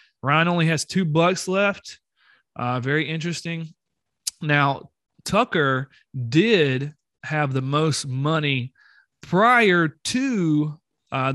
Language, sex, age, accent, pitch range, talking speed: English, male, 30-49, American, 135-175 Hz, 100 wpm